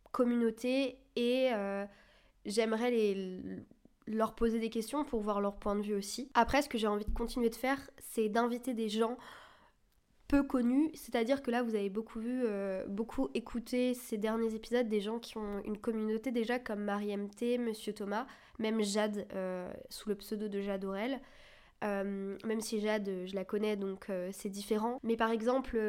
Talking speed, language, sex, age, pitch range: 185 wpm, French, female, 20-39, 210-245 Hz